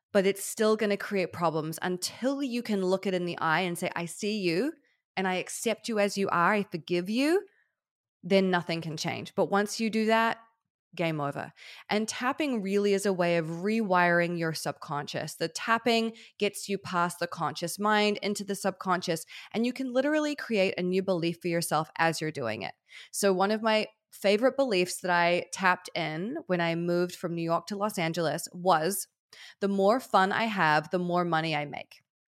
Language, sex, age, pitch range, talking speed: English, female, 20-39, 175-220 Hz, 195 wpm